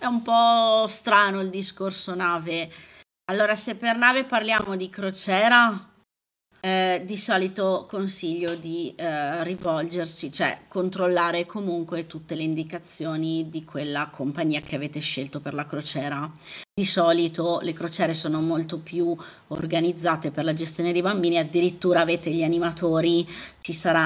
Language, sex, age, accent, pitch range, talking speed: Italian, female, 30-49, native, 165-205 Hz, 135 wpm